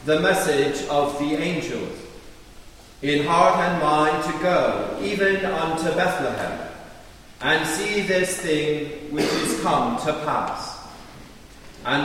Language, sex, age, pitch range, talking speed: English, male, 40-59, 145-180 Hz, 120 wpm